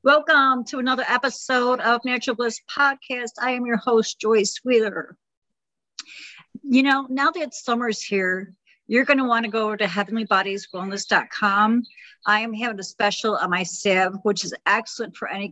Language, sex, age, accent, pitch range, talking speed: English, female, 50-69, American, 200-245 Hz, 160 wpm